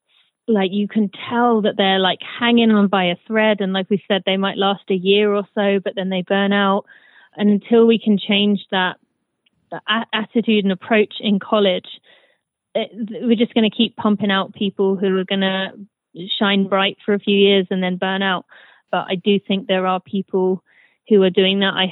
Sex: female